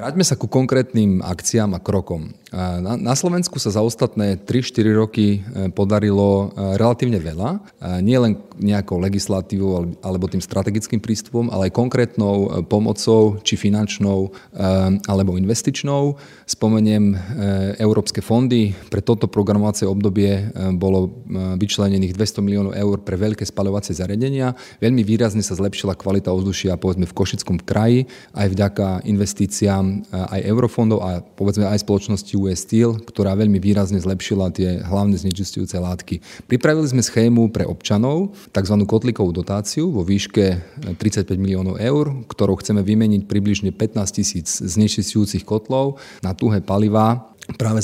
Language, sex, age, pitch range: Slovak, male, 30-49, 95-110 Hz